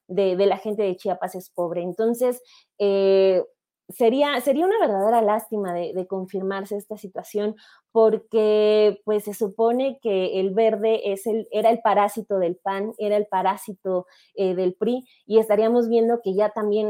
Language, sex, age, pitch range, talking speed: Spanish, female, 20-39, 195-225 Hz, 165 wpm